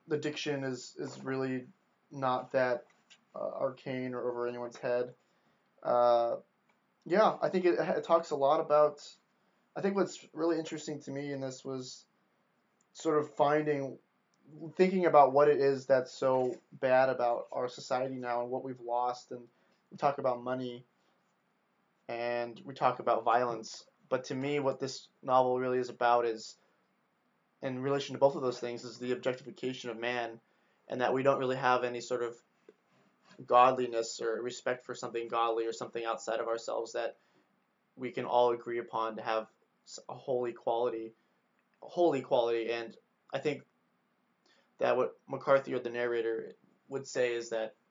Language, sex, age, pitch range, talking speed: English, male, 20-39, 120-140 Hz, 165 wpm